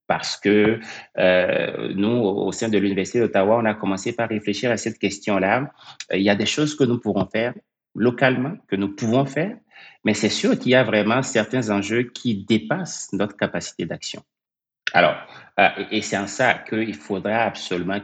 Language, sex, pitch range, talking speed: French, male, 95-115 Hz, 180 wpm